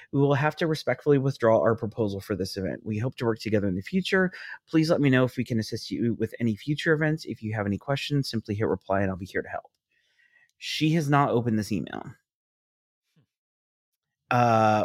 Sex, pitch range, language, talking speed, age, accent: male, 110-145 Hz, English, 215 wpm, 30-49, American